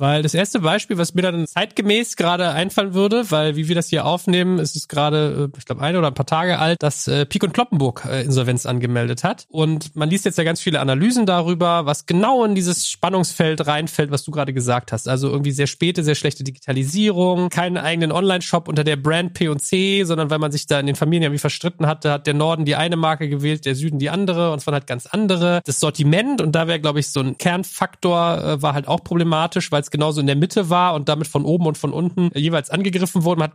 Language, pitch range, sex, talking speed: German, 145-180 Hz, male, 240 wpm